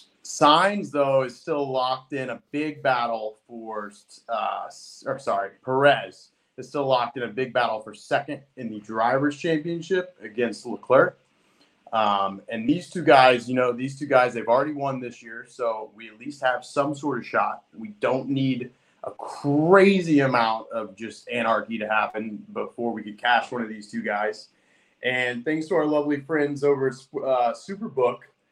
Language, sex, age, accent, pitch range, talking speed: English, male, 30-49, American, 115-145 Hz, 175 wpm